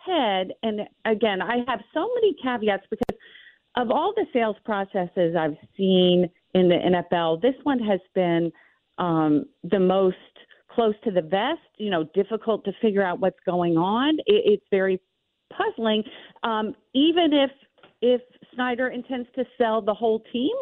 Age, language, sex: 40-59, English, female